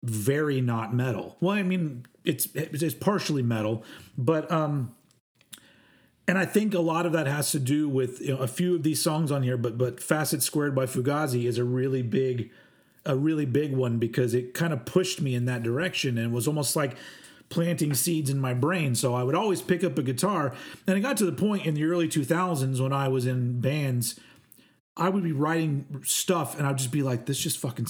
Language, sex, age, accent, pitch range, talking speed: English, male, 40-59, American, 125-165 Hz, 215 wpm